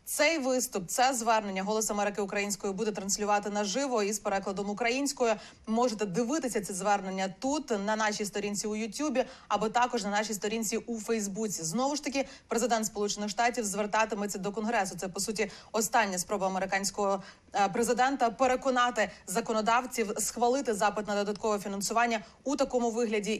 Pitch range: 205-250 Hz